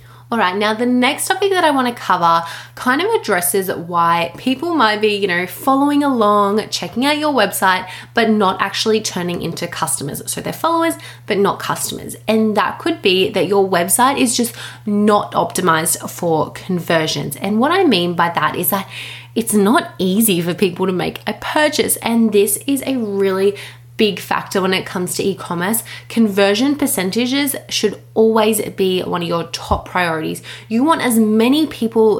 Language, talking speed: English, 175 wpm